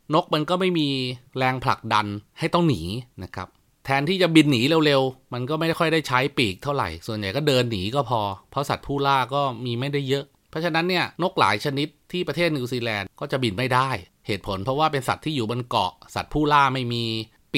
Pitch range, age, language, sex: 110-145 Hz, 30-49, Thai, male